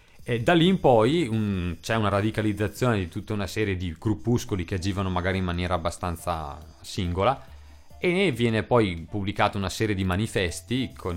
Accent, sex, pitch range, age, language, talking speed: native, male, 85-110 Hz, 30-49, Italian, 165 wpm